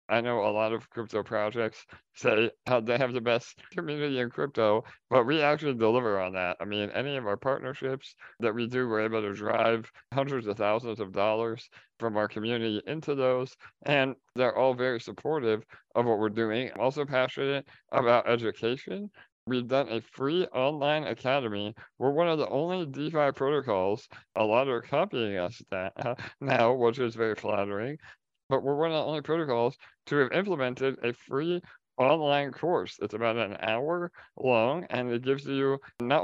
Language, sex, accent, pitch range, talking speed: English, male, American, 115-145 Hz, 175 wpm